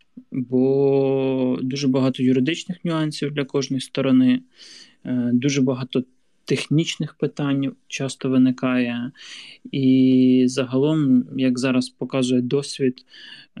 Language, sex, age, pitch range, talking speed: Ukrainian, male, 20-39, 125-140 Hz, 90 wpm